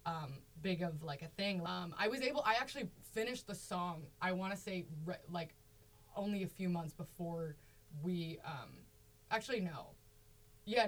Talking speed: 165 wpm